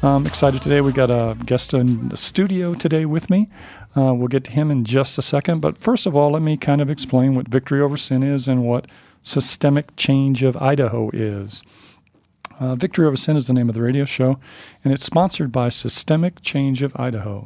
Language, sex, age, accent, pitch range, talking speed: English, male, 40-59, American, 125-145 Hz, 215 wpm